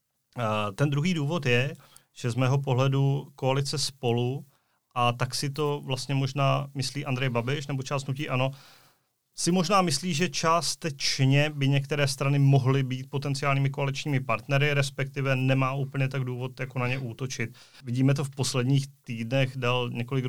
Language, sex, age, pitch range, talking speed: Czech, male, 30-49, 120-135 Hz, 155 wpm